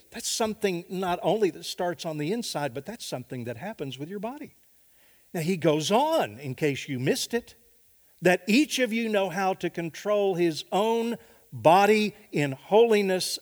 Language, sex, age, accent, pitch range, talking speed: English, male, 50-69, American, 125-190 Hz, 175 wpm